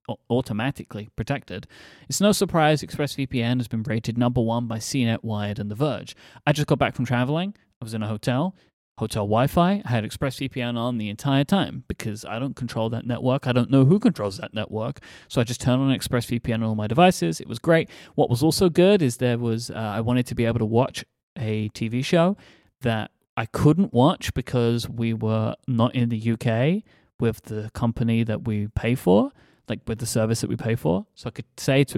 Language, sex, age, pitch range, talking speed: English, male, 30-49, 110-140 Hz, 210 wpm